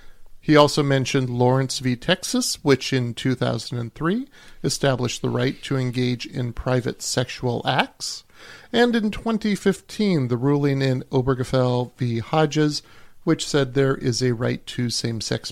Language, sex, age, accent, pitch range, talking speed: English, male, 40-59, American, 125-155 Hz, 135 wpm